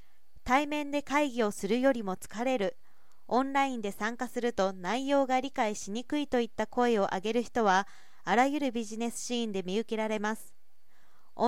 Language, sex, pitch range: Japanese, female, 215-265 Hz